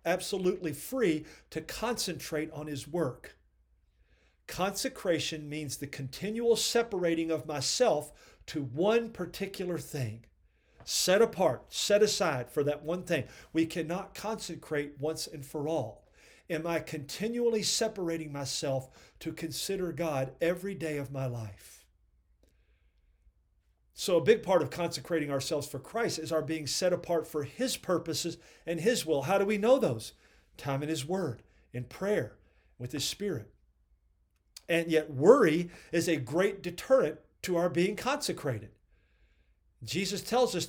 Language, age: English, 50-69